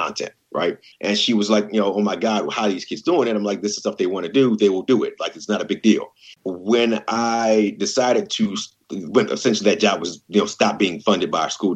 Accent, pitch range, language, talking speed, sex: American, 90-110 Hz, English, 270 wpm, male